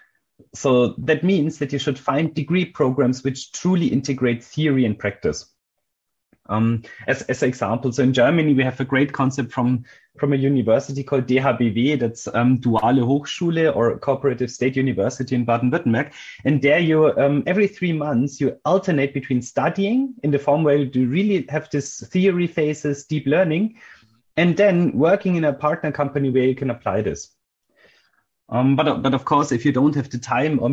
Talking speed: 180 wpm